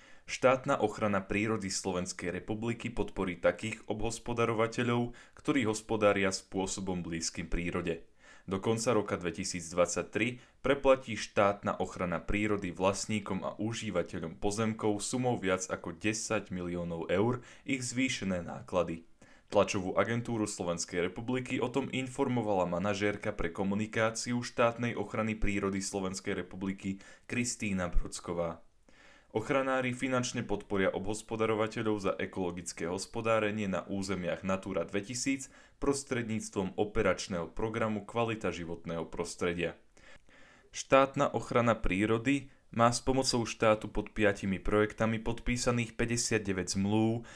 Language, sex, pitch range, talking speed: Slovak, male, 95-115 Hz, 100 wpm